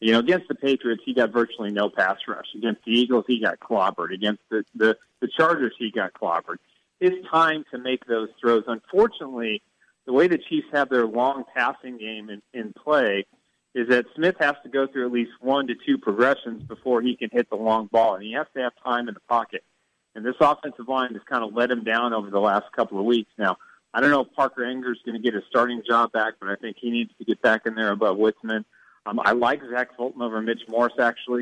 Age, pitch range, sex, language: 40-59, 110-130 Hz, male, English